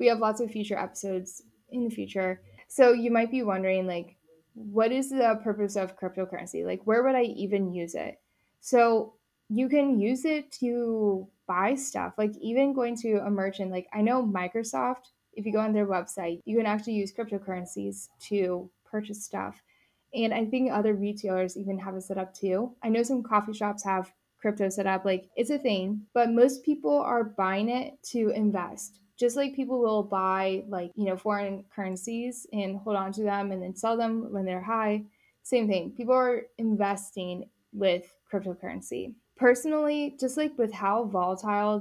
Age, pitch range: 10-29, 190-235 Hz